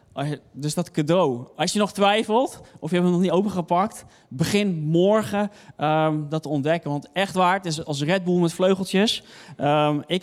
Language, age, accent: Dutch, 20-39, Dutch